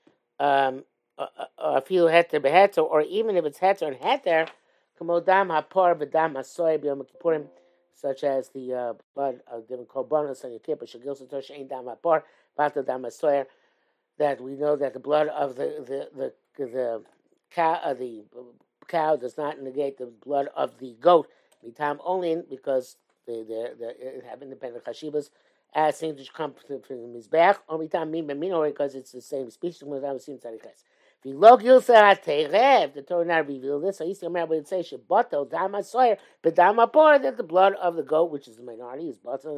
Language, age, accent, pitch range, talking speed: English, 50-69, American, 140-175 Hz, 160 wpm